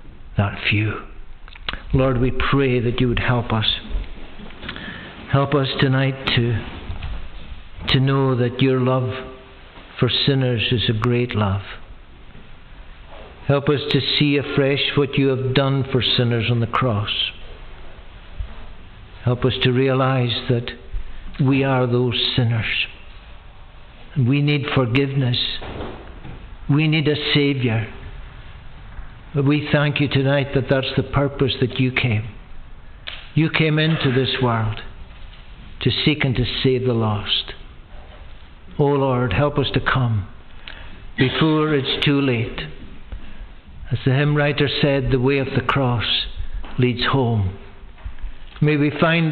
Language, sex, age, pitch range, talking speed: English, male, 60-79, 110-140 Hz, 125 wpm